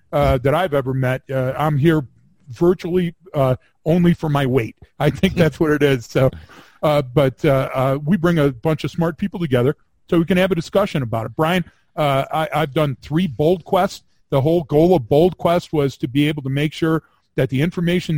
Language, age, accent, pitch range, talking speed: English, 50-69, American, 140-165 Hz, 215 wpm